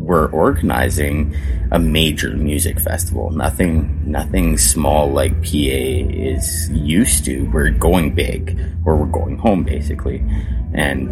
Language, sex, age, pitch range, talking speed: English, male, 30-49, 70-85 Hz, 125 wpm